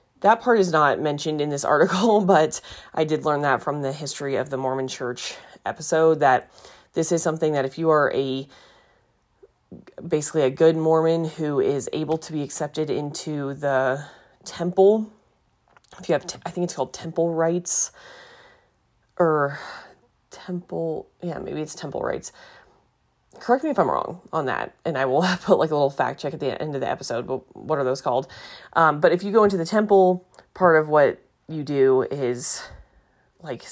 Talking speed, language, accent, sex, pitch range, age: 180 wpm, English, American, female, 140-170 Hz, 30-49